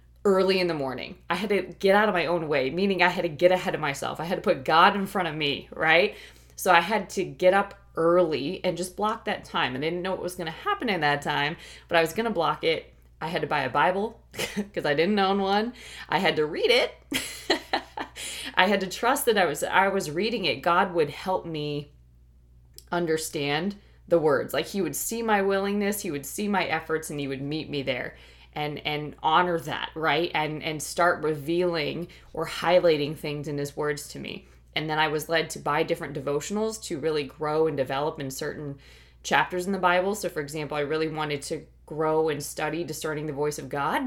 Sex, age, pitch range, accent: female, 20-39, 150-190 Hz, American